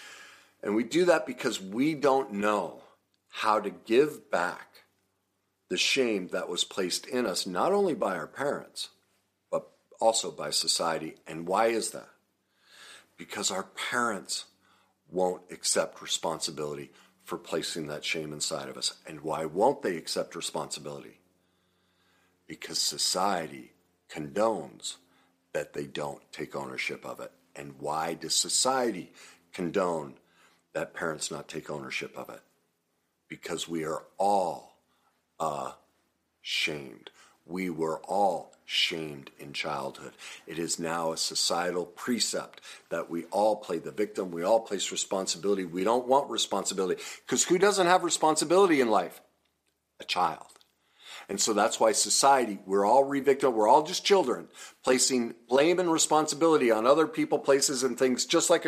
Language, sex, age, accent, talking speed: English, male, 50-69, American, 140 wpm